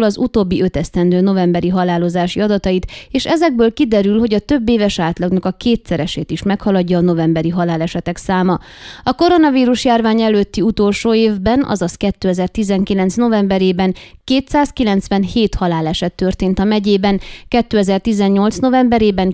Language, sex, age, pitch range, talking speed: Hungarian, female, 20-39, 180-225 Hz, 120 wpm